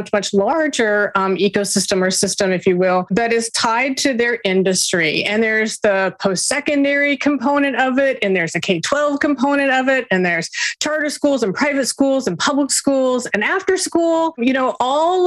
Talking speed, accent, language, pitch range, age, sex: 180 wpm, American, English, 200-265 Hz, 30-49, female